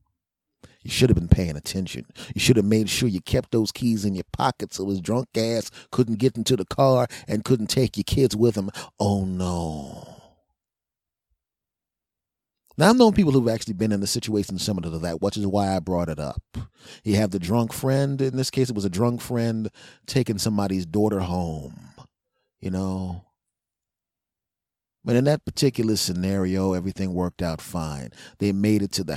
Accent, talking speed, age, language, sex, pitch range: American, 185 wpm, 30-49, English, male, 95-120 Hz